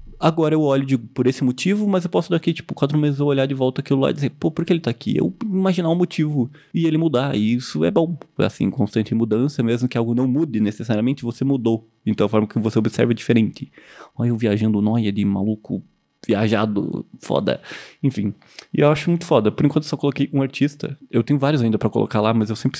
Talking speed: 230 wpm